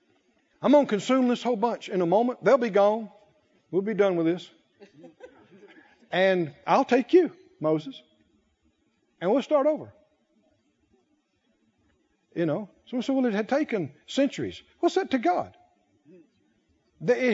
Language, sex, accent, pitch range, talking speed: English, male, American, 200-310 Hz, 145 wpm